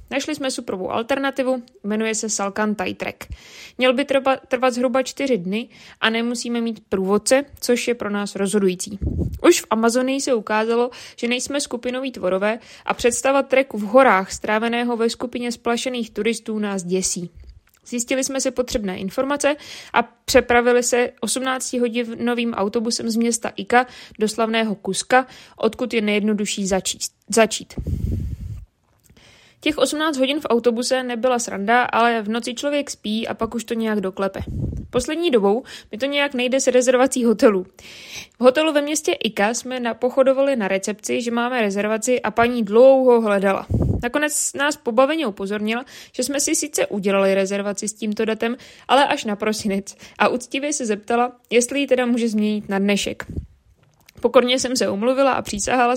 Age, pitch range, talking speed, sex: 20-39, 210-260 Hz, 155 wpm, female